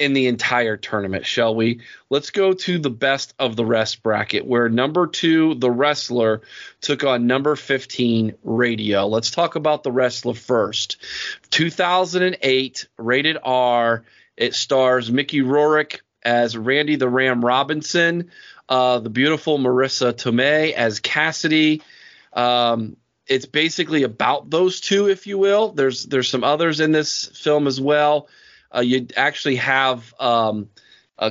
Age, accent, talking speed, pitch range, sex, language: 30-49, American, 140 wpm, 120-150 Hz, male, English